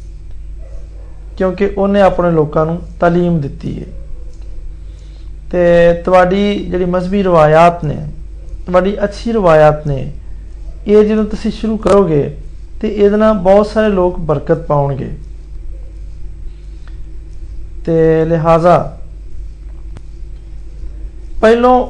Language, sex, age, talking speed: Hindi, male, 50-69, 80 wpm